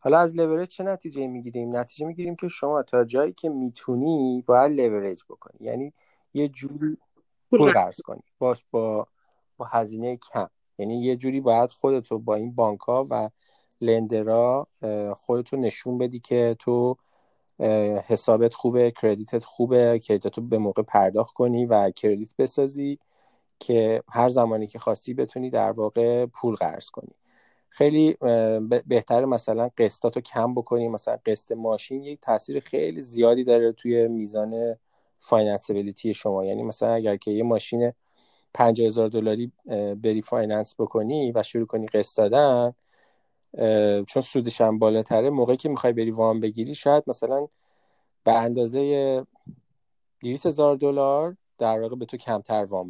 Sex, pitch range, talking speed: male, 110-130 Hz, 140 wpm